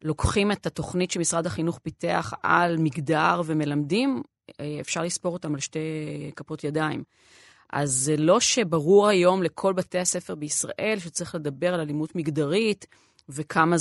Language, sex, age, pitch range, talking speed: Hebrew, female, 30-49, 155-195 Hz, 135 wpm